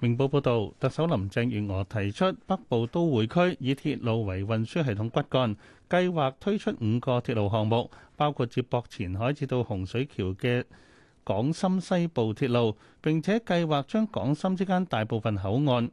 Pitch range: 110-150 Hz